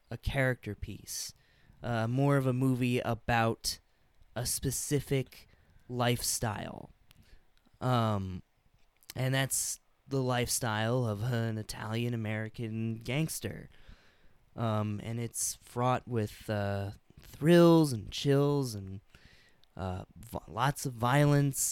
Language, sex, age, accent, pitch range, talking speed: English, male, 20-39, American, 105-130 Hz, 100 wpm